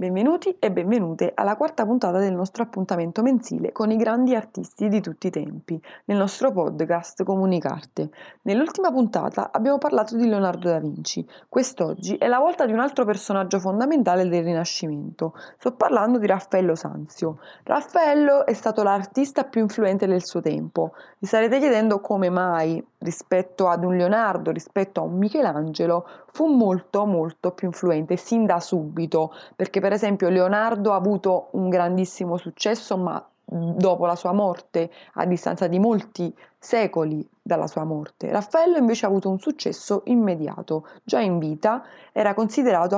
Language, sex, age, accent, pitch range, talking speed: Italian, female, 20-39, native, 175-225 Hz, 155 wpm